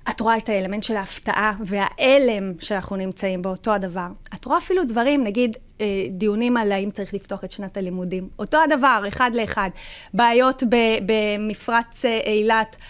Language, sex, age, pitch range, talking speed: Hebrew, female, 30-49, 210-310 Hz, 150 wpm